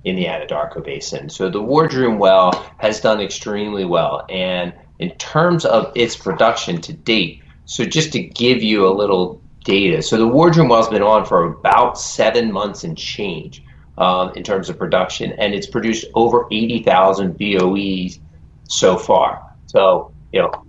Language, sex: English, male